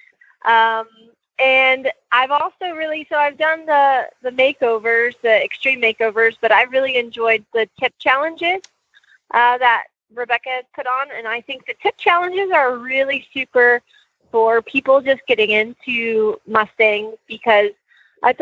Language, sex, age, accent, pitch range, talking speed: English, female, 30-49, American, 225-280 Hz, 145 wpm